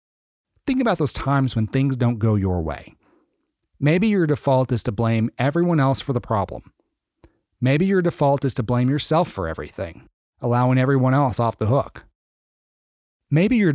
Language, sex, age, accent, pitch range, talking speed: English, male, 40-59, American, 105-145 Hz, 165 wpm